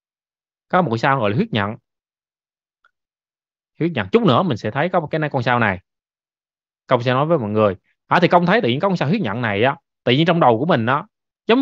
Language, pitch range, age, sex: Vietnamese, 115-170 Hz, 20-39, male